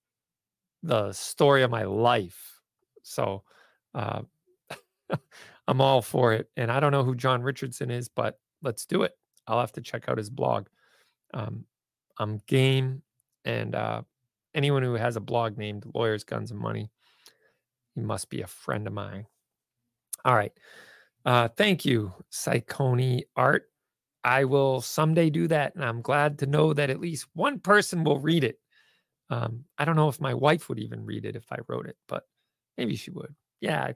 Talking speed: 175 wpm